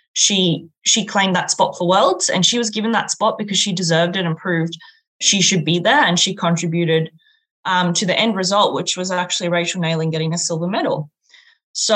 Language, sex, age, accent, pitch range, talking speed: English, female, 20-39, Australian, 170-215 Hz, 205 wpm